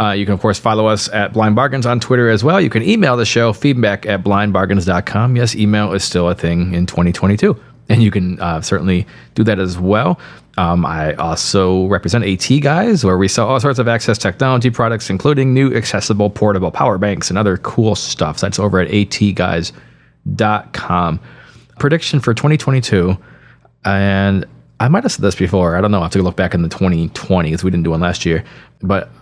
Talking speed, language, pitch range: 200 wpm, English, 95-115 Hz